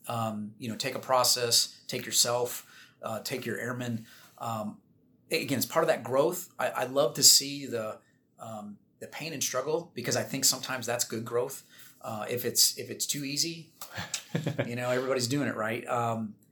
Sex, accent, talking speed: male, American, 185 wpm